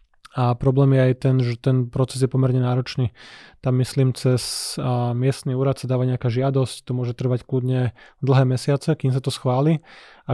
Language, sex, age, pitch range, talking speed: Slovak, male, 20-39, 125-135 Hz, 180 wpm